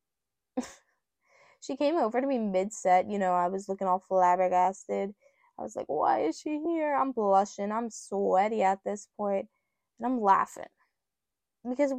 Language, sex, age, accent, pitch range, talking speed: English, female, 10-29, American, 195-265 Hz, 155 wpm